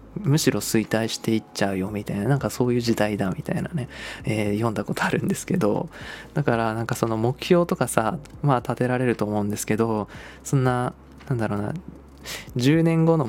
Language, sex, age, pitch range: Japanese, male, 20-39, 105-135 Hz